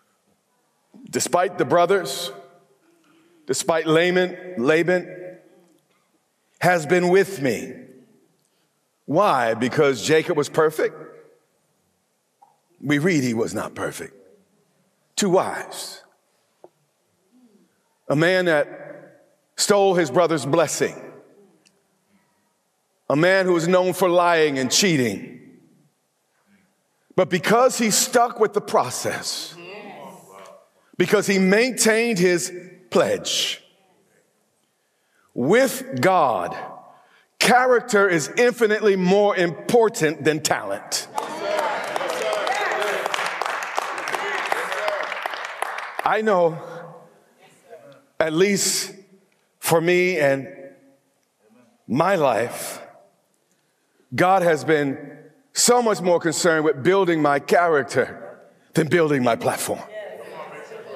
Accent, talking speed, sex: American, 80 wpm, male